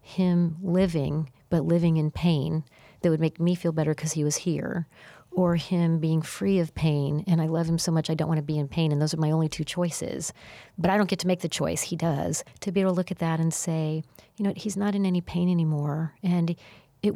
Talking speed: 250 wpm